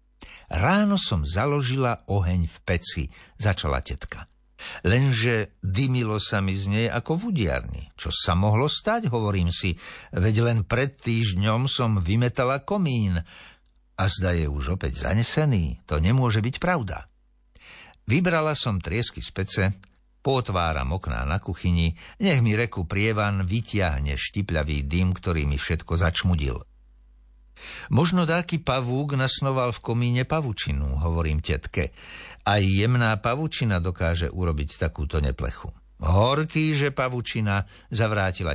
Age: 60-79